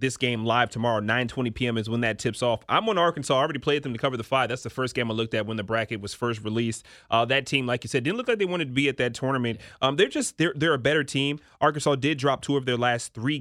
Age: 30-49